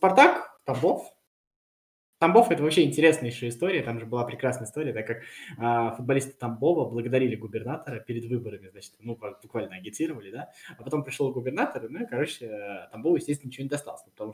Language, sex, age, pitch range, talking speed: Russian, male, 20-39, 120-165 Hz, 175 wpm